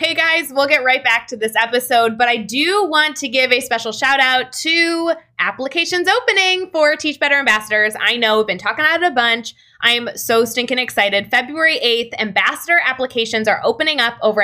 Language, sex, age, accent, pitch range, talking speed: English, female, 20-39, American, 220-285 Hz, 200 wpm